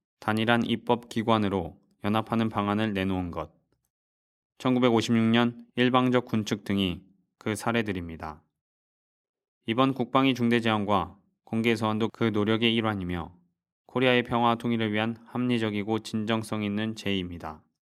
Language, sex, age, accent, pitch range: Korean, male, 20-39, native, 100-120 Hz